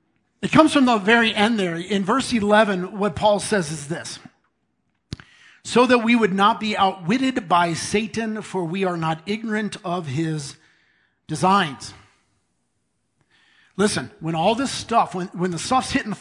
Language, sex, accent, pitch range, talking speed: English, male, American, 170-230 Hz, 160 wpm